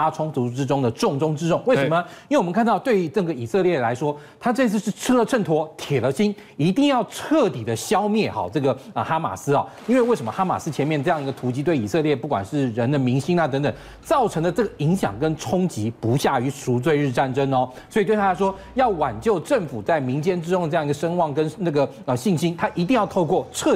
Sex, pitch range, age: male, 145-210 Hz, 40-59